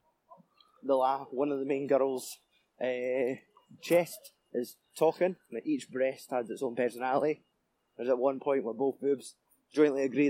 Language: English